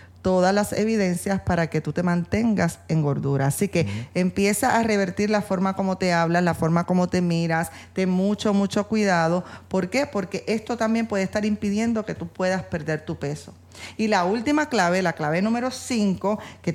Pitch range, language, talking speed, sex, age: 170-210 Hz, Spanish, 185 wpm, female, 40-59